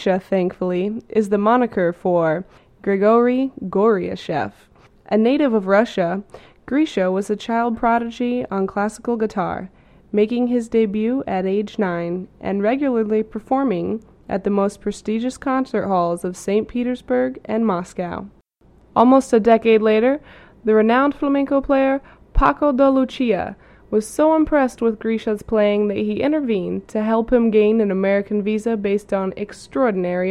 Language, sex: English, female